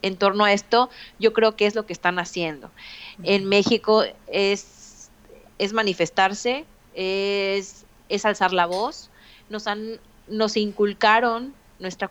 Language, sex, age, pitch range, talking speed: Spanish, female, 30-49, 180-220 Hz, 135 wpm